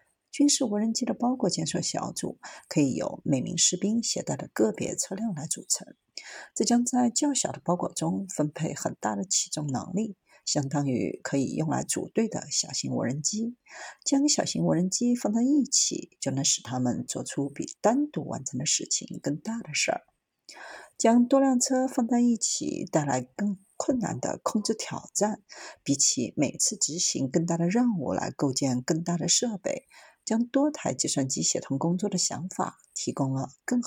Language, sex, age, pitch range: Chinese, female, 50-69, 150-235 Hz